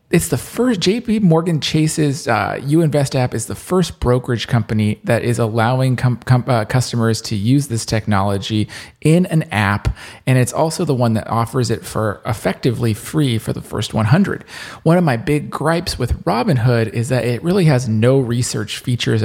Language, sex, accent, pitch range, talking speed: English, male, American, 115-160 Hz, 185 wpm